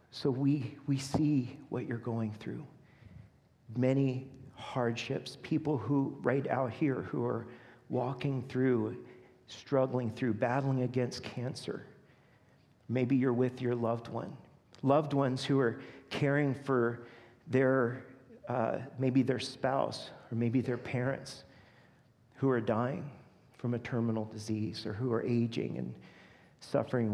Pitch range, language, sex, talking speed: 120-135 Hz, English, male, 130 wpm